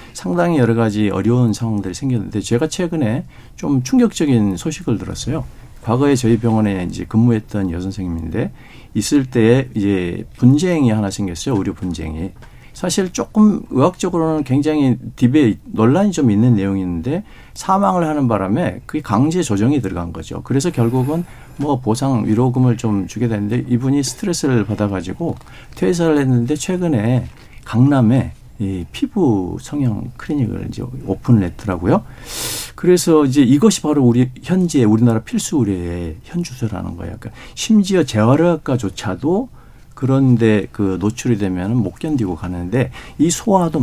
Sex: male